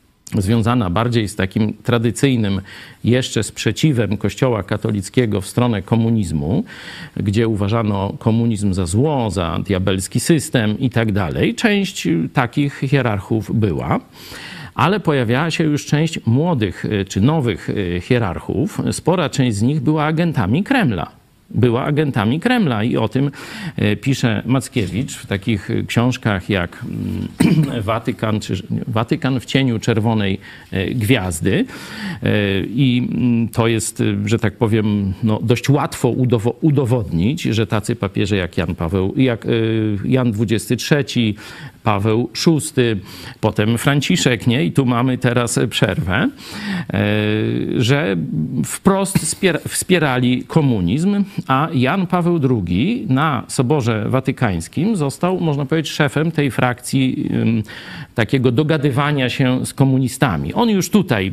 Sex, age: male, 50-69